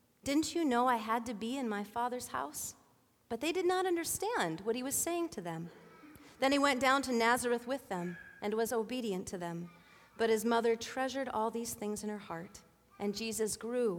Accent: American